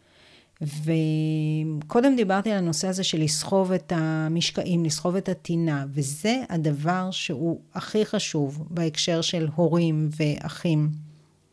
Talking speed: 110 wpm